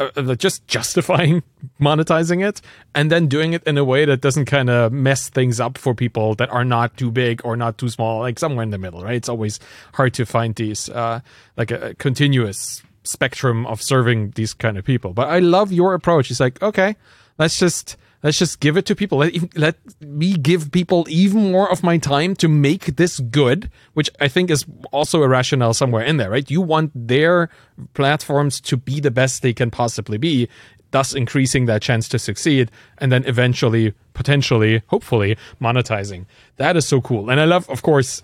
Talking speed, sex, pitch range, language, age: 200 wpm, male, 115-150 Hz, English, 30-49